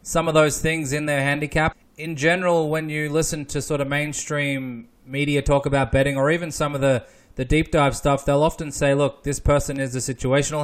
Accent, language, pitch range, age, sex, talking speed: Australian, English, 130-150 Hz, 20-39, male, 215 wpm